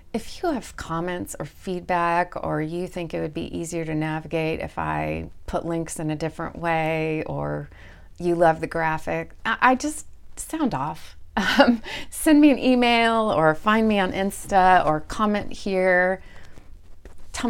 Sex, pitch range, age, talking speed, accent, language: female, 155-210 Hz, 30-49, 160 wpm, American, English